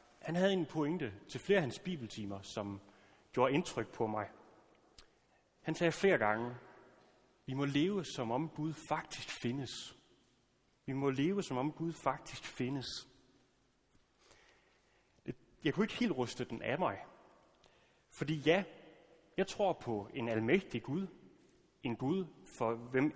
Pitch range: 115-170 Hz